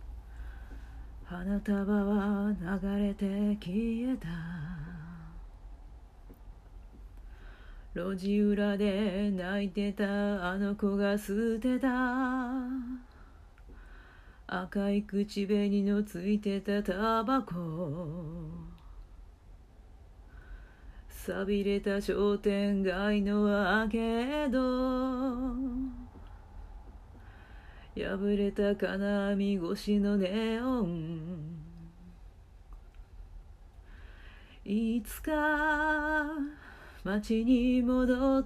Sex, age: female, 40-59